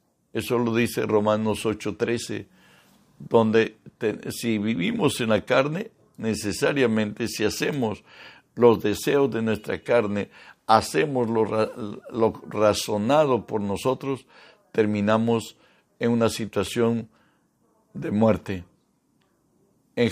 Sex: male